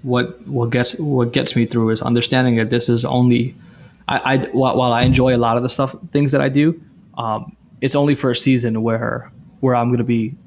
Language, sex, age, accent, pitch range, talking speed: English, male, 20-39, American, 115-130 Hz, 220 wpm